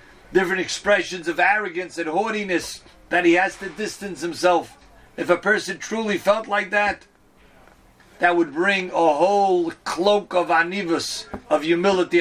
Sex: male